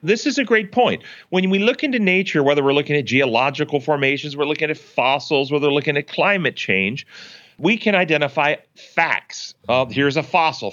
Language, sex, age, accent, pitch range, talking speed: English, male, 40-59, American, 130-175 Hz, 190 wpm